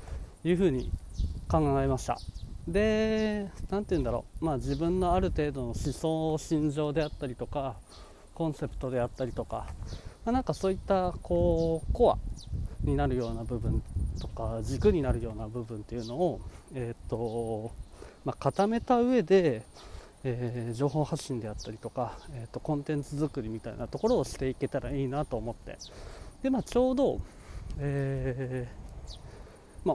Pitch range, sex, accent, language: 115-160 Hz, male, native, Japanese